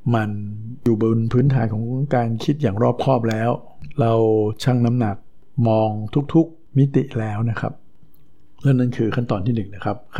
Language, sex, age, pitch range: Thai, male, 60-79, 110-125 Hz